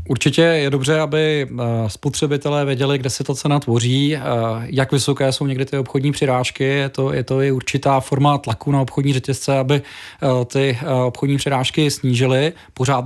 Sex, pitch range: male, 130-150 Hz